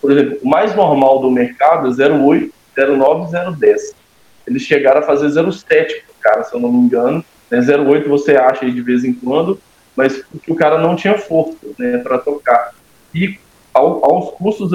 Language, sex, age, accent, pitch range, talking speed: Portuguese, male, 20-39, Brazilian, 140-195 Hz, 180 wpm